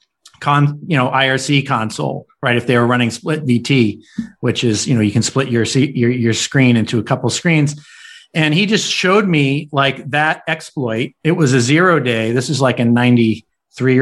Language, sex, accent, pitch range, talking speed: English, male, American, 130-155 Hz, 195 wpm